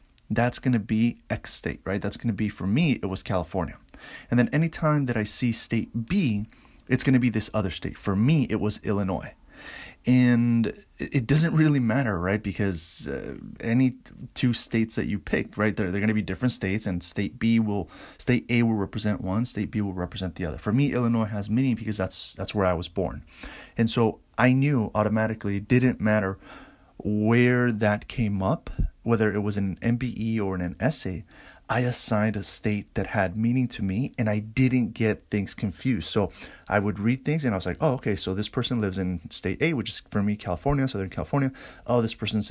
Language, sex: English, male